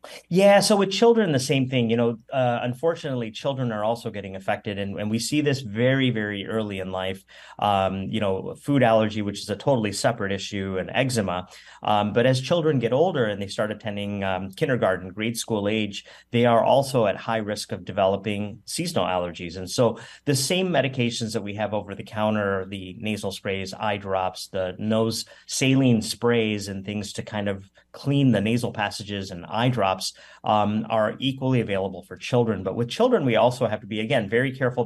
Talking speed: 195 wpm